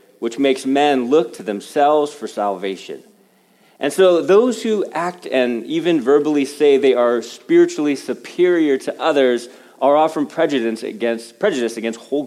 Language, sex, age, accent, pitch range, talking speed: English, male, 40-59, American, 130-195 Hz, 140 wpm